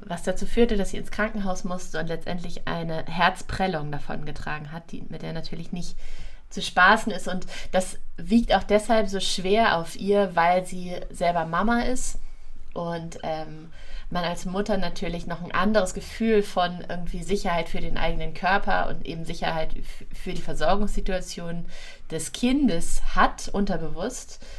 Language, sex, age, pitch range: German, female, 30-49, 165-200 Hz